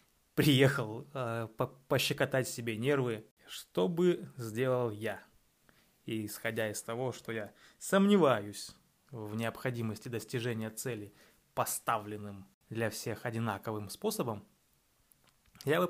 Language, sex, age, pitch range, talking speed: Russian, male, 20-39, 115-155 Hz, 100 wpm